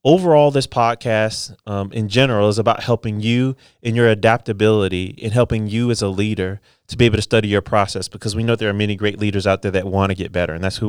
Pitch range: 100-120 Hz